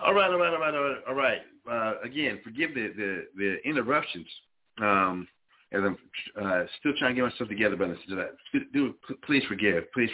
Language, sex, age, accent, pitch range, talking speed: English, male, 40-59, American, 90-115 Hz, 200 wpm